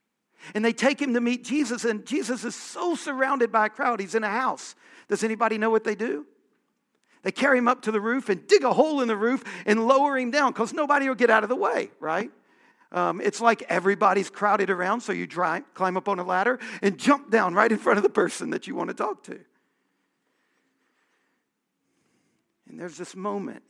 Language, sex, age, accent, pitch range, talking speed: English, male, 50-69, American, 195-255 Hz, 215 wpm